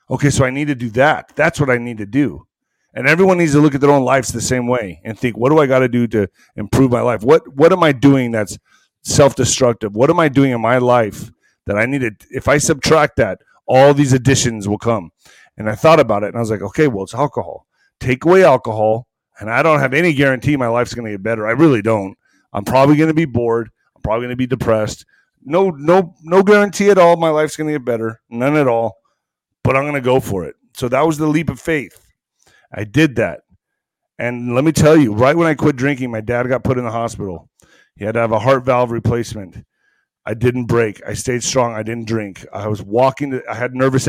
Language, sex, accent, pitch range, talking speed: English, male, American, 115-140 Hz, 245 wpm